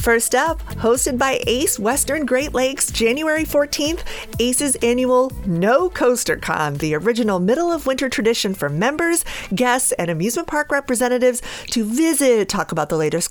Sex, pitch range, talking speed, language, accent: female, 180-270 Hz, 155 wpm, English, American